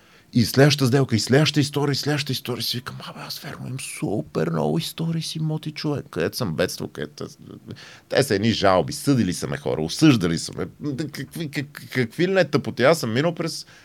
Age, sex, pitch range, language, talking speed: 40-59, male, 85-145 Hz, Bulgarian, 195 wpm